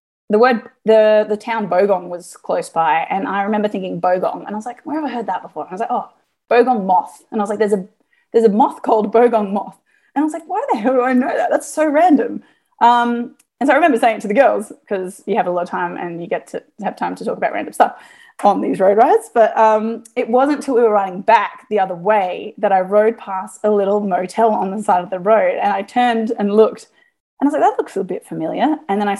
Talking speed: 270 wpm